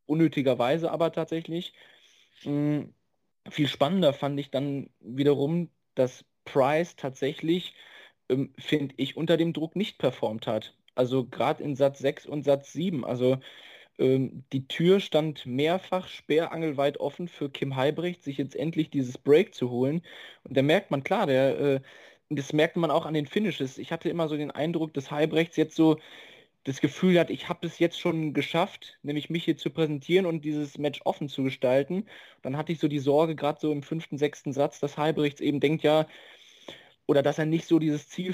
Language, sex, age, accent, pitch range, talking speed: German, male, 20-39, German, 140-165 Hz, 180 wpm